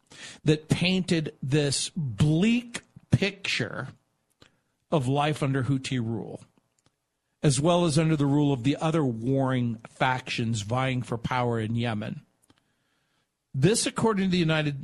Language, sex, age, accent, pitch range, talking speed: English, male, 50-69, American, 135-170 Hz, 125 wpm